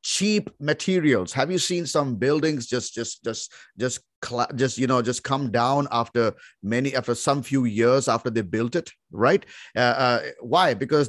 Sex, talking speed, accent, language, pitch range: male, 175 wpm, Indian, English, 120-160 Hz